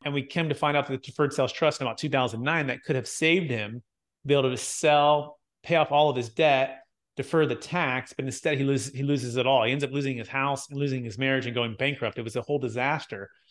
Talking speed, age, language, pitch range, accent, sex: 260 wpm, 30-49, English, 130-155 Hz, American, male